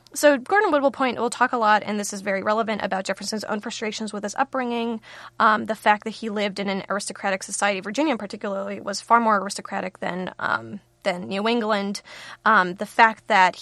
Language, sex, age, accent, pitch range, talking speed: English, female, 20-39, American, 195-230 Hz, 205 wpm